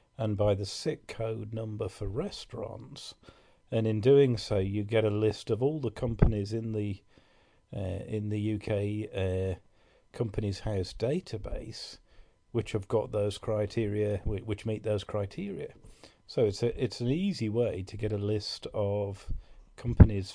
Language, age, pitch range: English, 40-59, 100-115 Hz